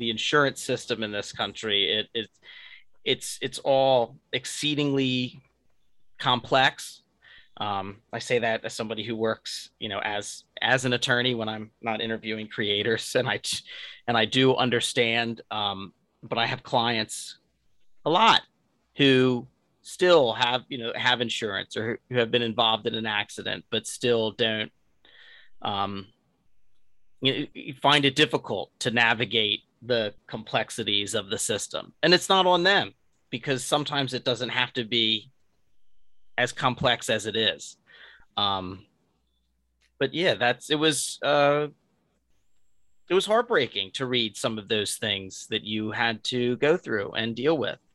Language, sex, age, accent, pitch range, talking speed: English, male, 30-49, American, 110-140 Hz, 145 wpm